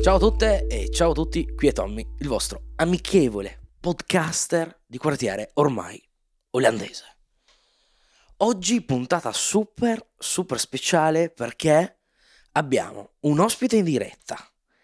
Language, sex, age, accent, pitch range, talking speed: Italian, male, 20-39, native, 125-185 Hz, 115 wpm